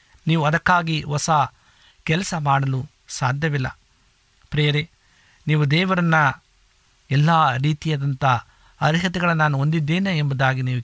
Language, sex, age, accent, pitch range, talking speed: Kannada, male, 50-69, native, 130-155 Hz, 90 wpm